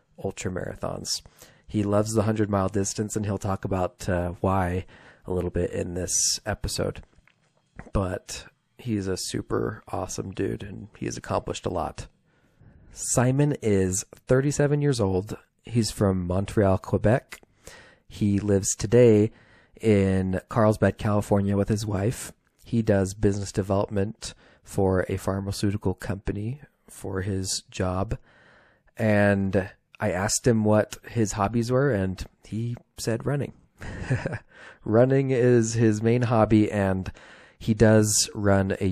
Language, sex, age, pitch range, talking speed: English, male, 40-59, 95-110 Hz, 125 wpm